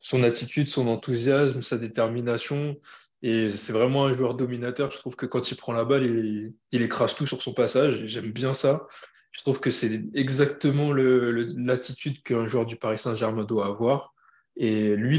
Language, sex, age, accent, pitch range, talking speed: French, male, 20-39, French, 115-145 Hz, 190 wpm